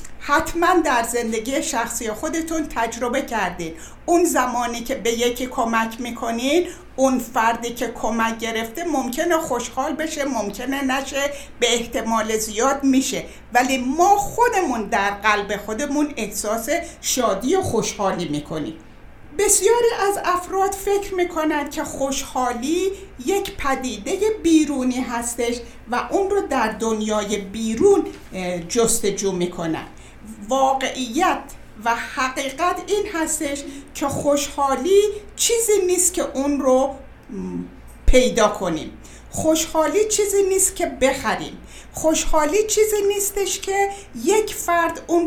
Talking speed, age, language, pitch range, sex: 110 wpm, 60-79, Persian, 230-340 Hz, female